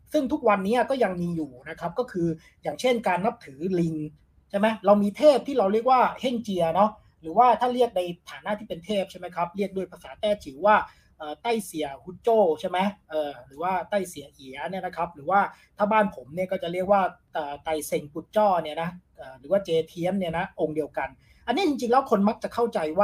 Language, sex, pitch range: Thai, male, 165-225 Hz